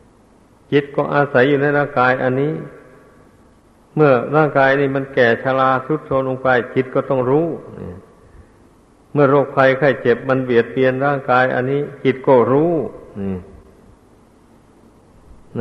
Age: 60-79